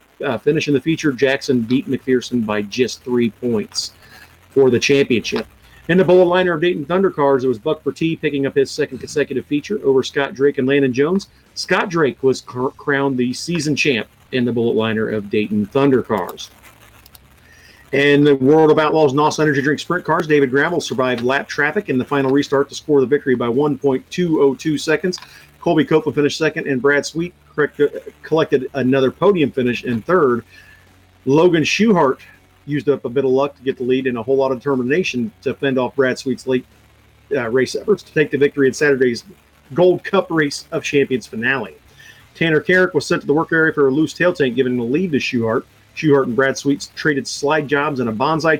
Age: 40-59